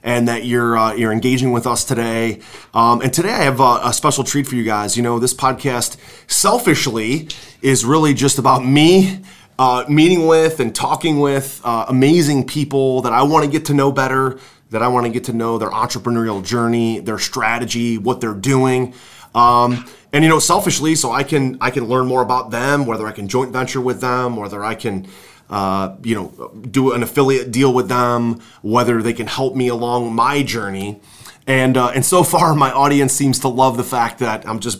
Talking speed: 205 wpm